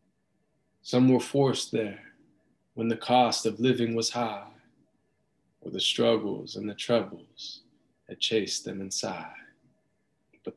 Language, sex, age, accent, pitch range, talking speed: English, male, 20-39, American, 110-125 Hz, 125 wpm